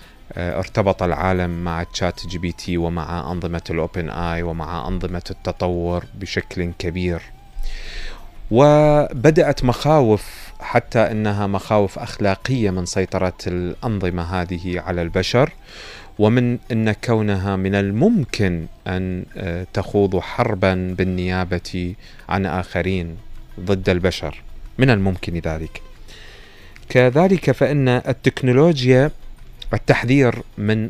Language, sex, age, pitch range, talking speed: Arabic, male, 30-49, 90-110 Hz, 95 wpm